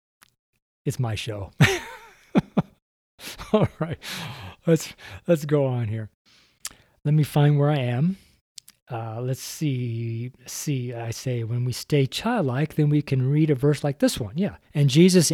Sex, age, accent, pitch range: male, 40-59, American, 120-170 Hz